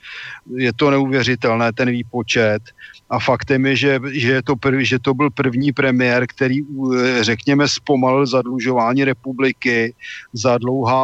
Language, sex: Slovak, male